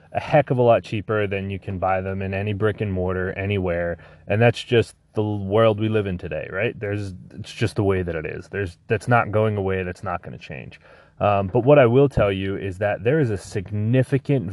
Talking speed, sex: 235 wpm, male